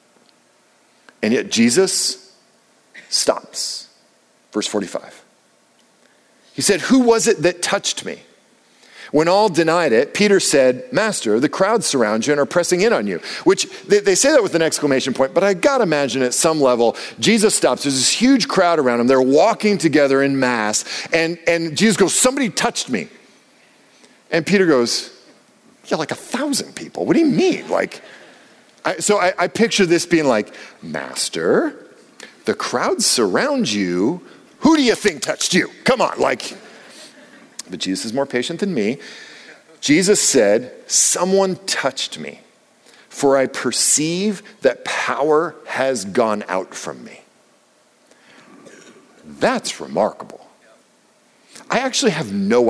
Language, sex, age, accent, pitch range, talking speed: English, male, 50-69, American, 135-215 Hz, 145 wpm